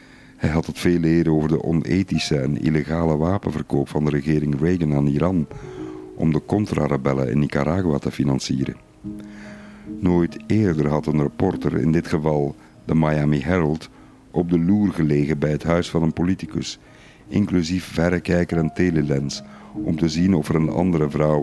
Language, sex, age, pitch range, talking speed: Dutch, male, 50-69, 75-90 Hz, 160 wpm